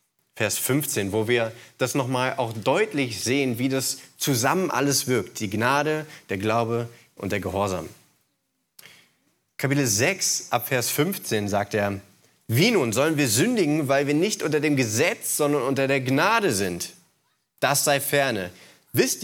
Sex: male